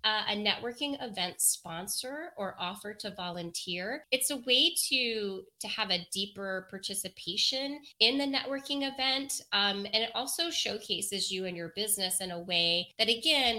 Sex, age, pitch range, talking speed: female, 30-49, 180-215 Hz, 160 wpm